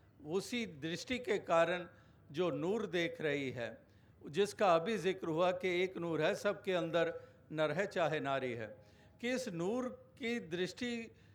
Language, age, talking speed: Hindi, 50-69, 160 wpm